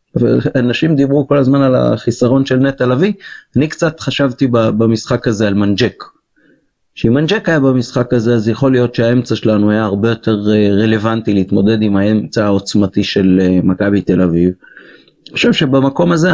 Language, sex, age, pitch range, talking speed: Hebrew, male, 30-49, 105-125 Hz, 160 wpm